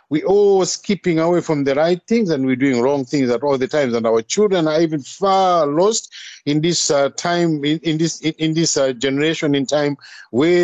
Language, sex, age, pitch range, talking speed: English, male, 50-69, 140-170 Hz, 220 wpm